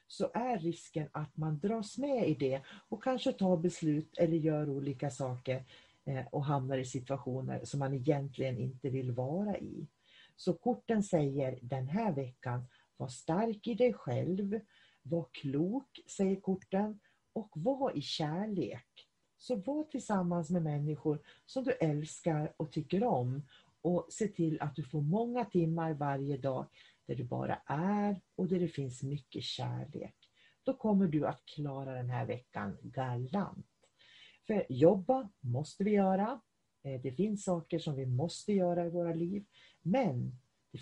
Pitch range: 135-200 Hz